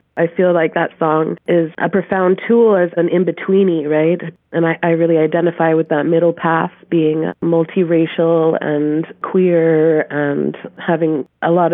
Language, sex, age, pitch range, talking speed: English, female, 30-49, 160-180 Hz, 155 wpm